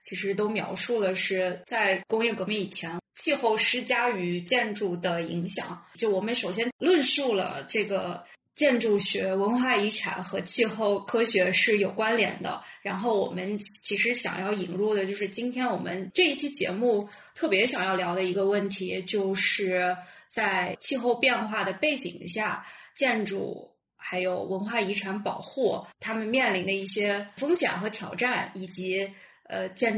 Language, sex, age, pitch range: Chinese, female, 20-39, 190-230 Hz